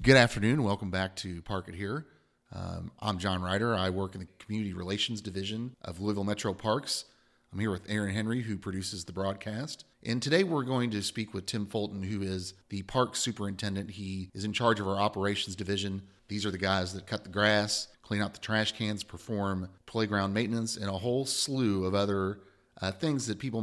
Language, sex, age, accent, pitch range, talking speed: English, male, 30-49, American, 95-110 Hz, 205 wpm